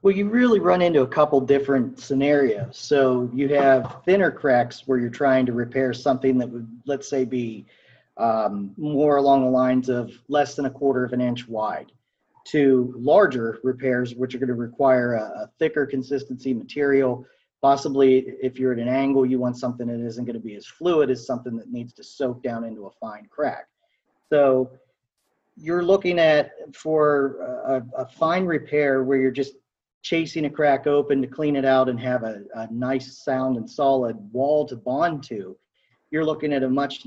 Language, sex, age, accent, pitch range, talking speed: English, male, 40-59, American, 125-145 Hz, 190 wpm